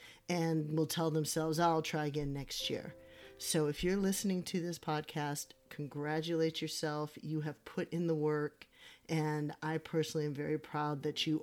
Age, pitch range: 40-59, 150-170 Hz